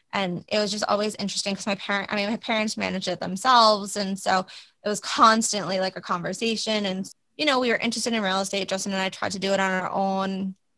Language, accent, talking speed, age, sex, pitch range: English, American, 240 wpm, 20-39, female, 190-220 Hz